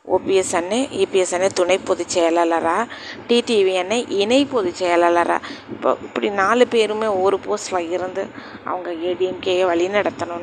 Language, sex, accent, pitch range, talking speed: Tamil, female, native, 180-215 Hz, 130 wpm